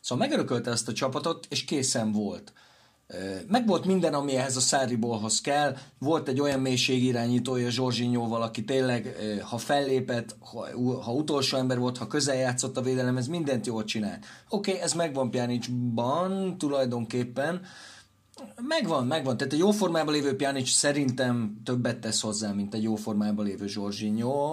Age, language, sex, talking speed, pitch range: 30-49, Hungarian, male, 150 wpm, 115-140 Hz